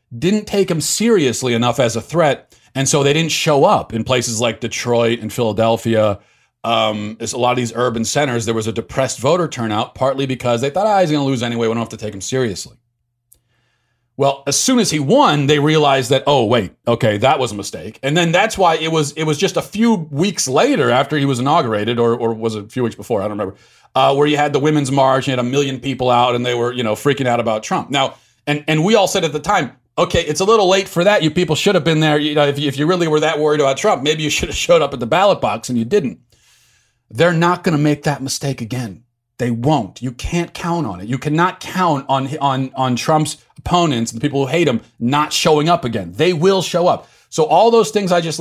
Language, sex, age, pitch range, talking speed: English, male, 40-59, 120-160 Hz, 255 wpm